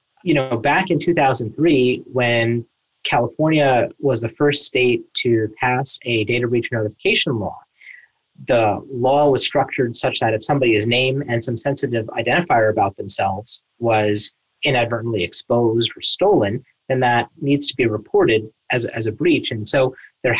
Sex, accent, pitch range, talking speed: male, American, 115-140 Hz, 150 wpm